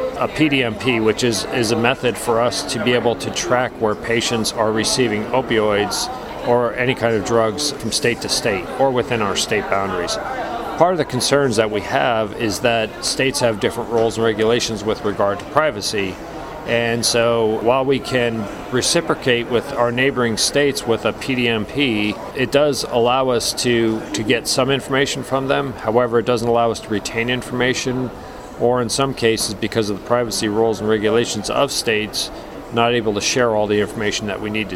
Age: 40-59